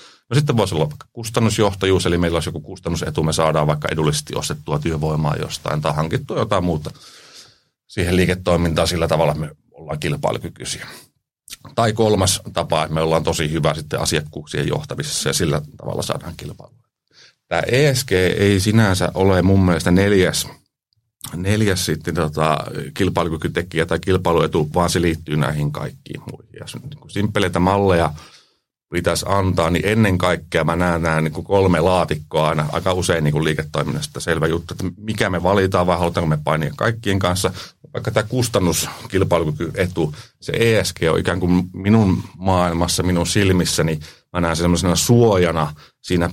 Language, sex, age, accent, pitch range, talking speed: Finnish, male, 30-49, native, 80-100 Hz, 145 wpm